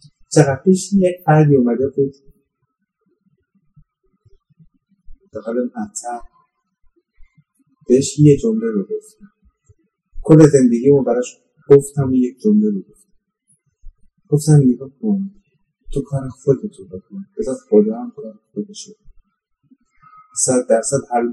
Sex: male